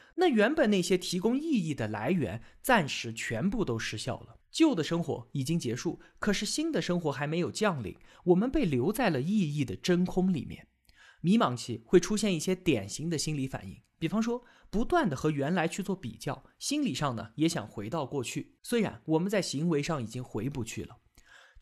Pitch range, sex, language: 125-205 Hz, male, Chinese